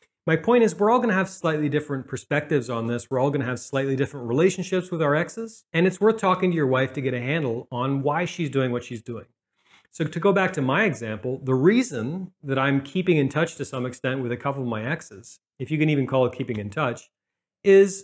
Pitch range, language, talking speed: 120-170 Hz, English, 245 wpm